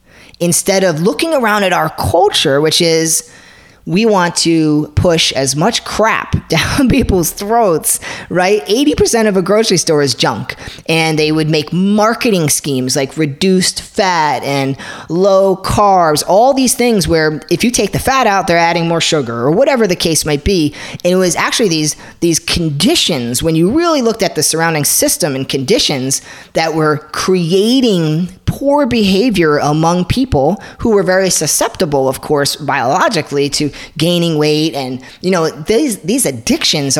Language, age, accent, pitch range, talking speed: English, 20-39, American, 150-215 Hz, 160 wpm